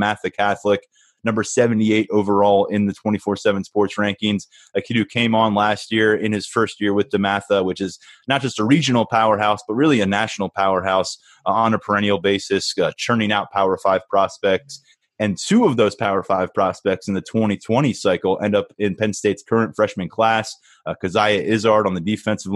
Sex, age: male, 20-39